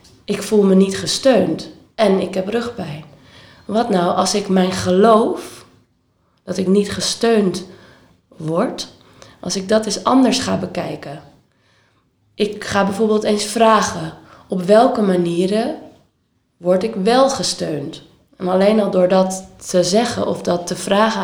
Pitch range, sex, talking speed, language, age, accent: 180-215 Hz, female, 140 wpm, Dutch, 20-39, Dutch